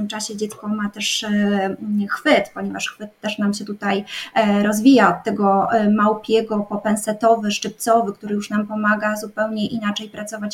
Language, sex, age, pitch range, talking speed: Polish, female, 20-39, 210-240 Hz, 140 wpm